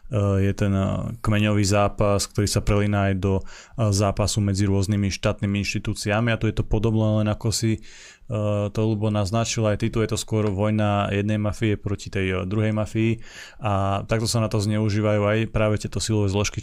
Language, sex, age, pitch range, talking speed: Slovak, male, 20-39, 100-110 Hz, 175 wpm